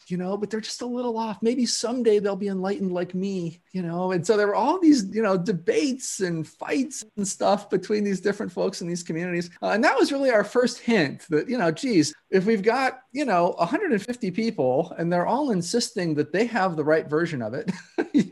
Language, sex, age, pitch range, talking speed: English, male, 30-49, 150-220 Hz, 225 wpm